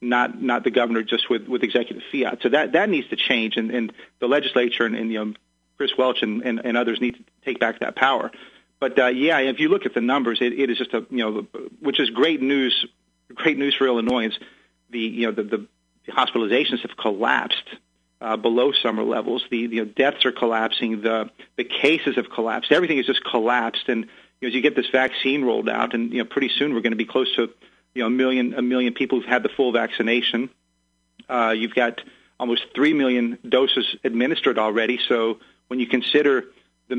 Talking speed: 215 wpm